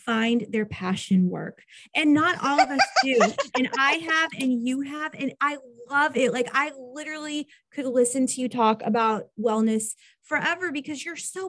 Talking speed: 180 wpm